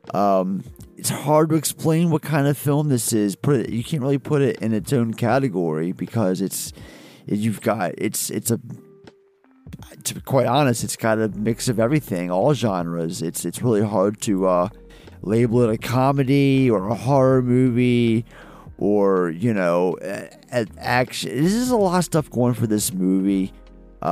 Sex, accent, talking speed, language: male, American, 180 wpm, English